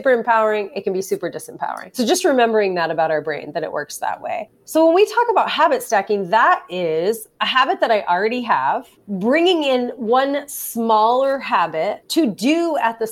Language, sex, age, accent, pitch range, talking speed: English, female, 30-49, American, 190-255 Hz, 190 wpm